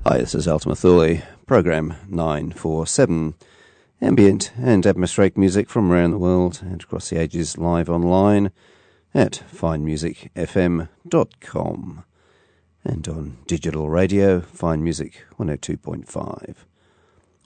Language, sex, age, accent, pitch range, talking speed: English, male, 40-59, British, 80-95 Hz, 100 wpm